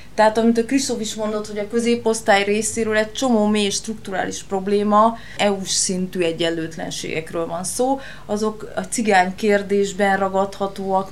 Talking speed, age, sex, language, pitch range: 135 wpm, 20-39, female, Hungarian, 185-220 Hz